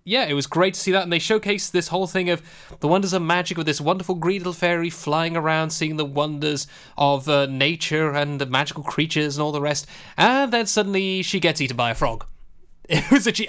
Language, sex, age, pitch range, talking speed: English, male, 20-39, 140-185 Hz, 230 wpm